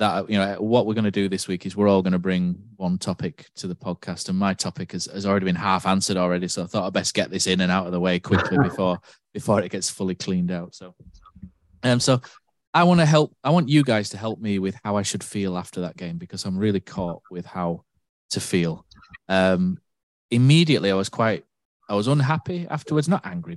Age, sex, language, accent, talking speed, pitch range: 20-39, male, English, British, 235 wpm, 95-125 Hz